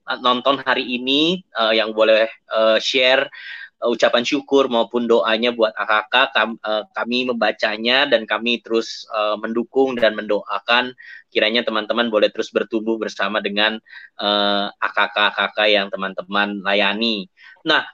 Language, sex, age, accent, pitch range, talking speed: Indonesian, male, 20-39, native, 115-140 Hz, 135 wpm